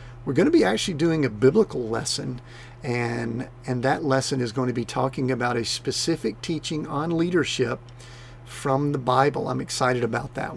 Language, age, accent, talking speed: English, 50-69, American, 175 wpm